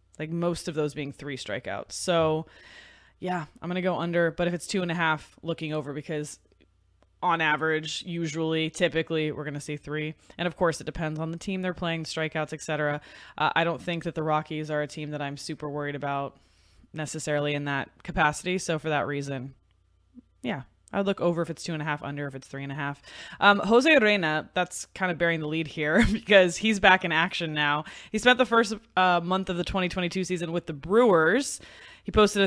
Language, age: English, 20-39